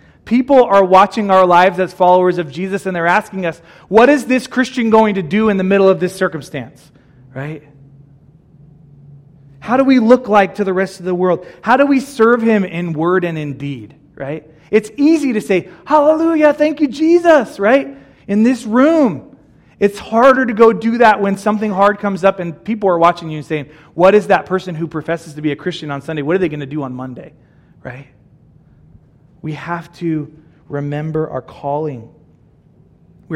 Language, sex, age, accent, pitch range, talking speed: English, male, 30-49, American, 150-195 Hz, 190 wpm